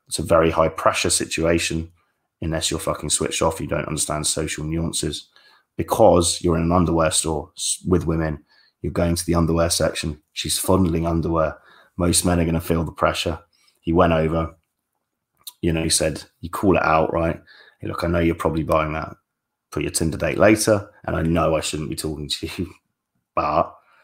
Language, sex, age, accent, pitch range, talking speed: English, male, 20-39, British, 80-90 Hz, 185 wpm